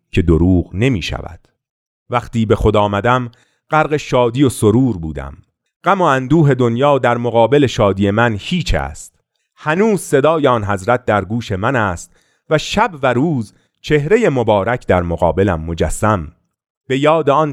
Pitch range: 90-135 Hz